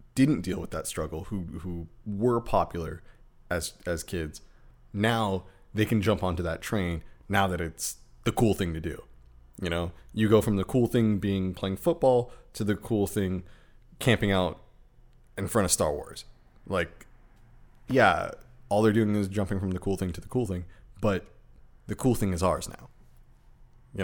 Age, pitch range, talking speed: 20-39, 90-115 Hz, 180 wpm